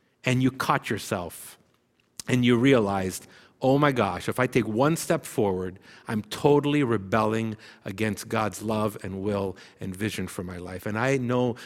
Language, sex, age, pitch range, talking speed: English, male, 50-69, 105-130 Hz, 165 wpm